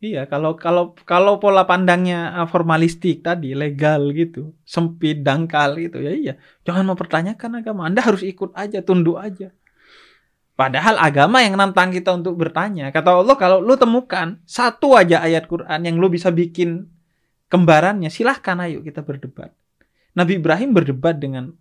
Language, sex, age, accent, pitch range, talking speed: Indonesian, male, 20-39, native, 160-200 Hz, 150 wpm